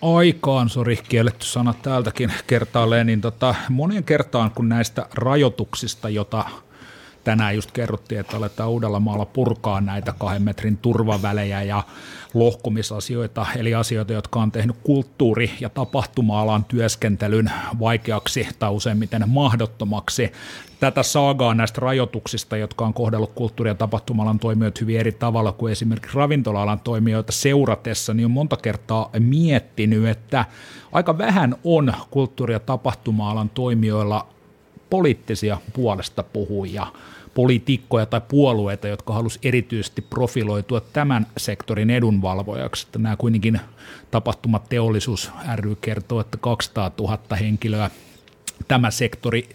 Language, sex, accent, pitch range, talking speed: Finnish, male, native, 110-125 Hz, 115 wpm